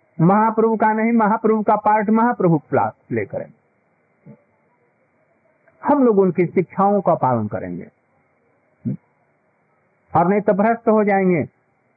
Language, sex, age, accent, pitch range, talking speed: Hindi, male, 50-69, native, 155-220 Hz, 110 wpm